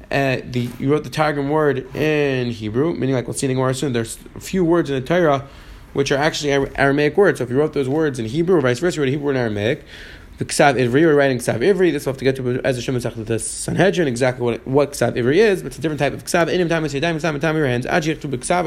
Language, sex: English, male